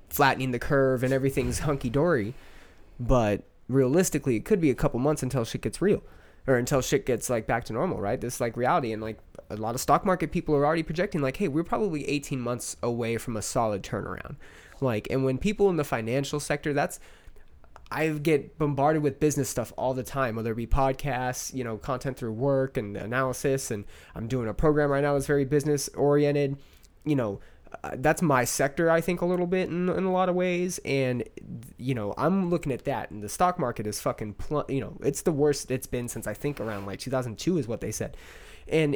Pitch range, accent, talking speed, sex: 115-150 Hz, American, 220 wpm, male